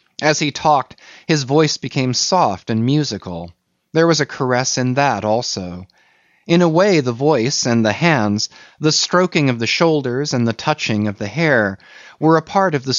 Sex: male